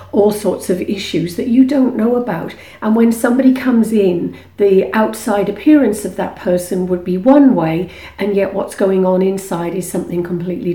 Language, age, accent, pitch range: English, 50-69, British, 180-225 Hz